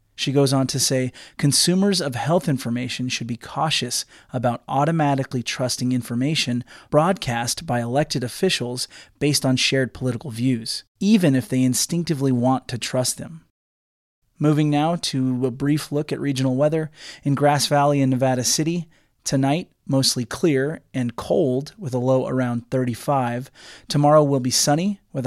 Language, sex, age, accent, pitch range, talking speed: English, male, 30-49, American, 125-145 Hz, 150 wpm